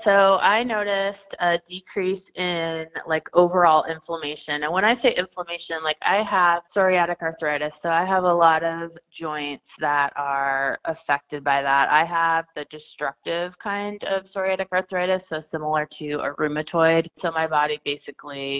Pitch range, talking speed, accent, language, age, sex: 145-175 Hz, 155 wpm, American, English, 20-39, female